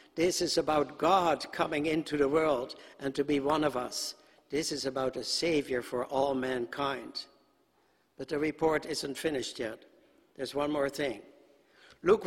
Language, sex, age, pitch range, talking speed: English, male, 60-79, 145-185 Hz, 160 wpm